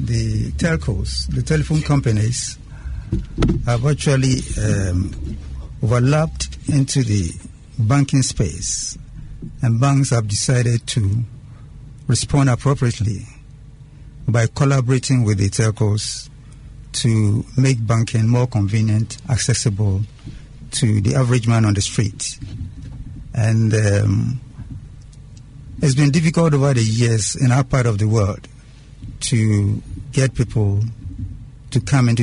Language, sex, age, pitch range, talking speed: English, male, 60-79, 110-135 Hz, 110 wpm